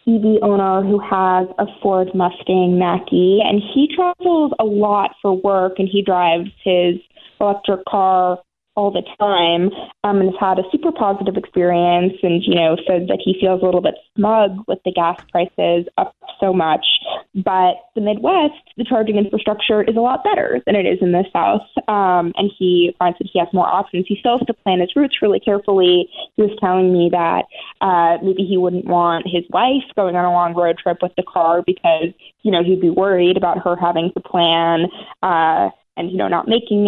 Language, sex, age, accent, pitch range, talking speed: English, female, 20-39, American, 180-210 Hz, 200 wpm